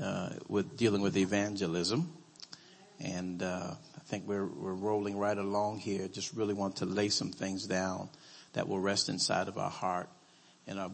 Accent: American